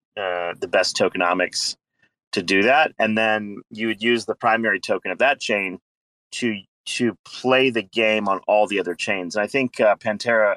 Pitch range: 100-120 Hz